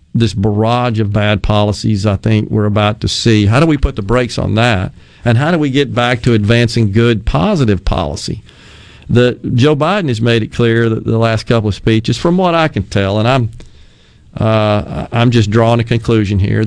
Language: English